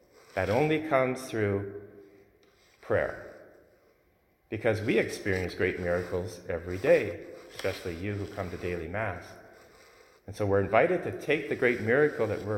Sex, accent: male, American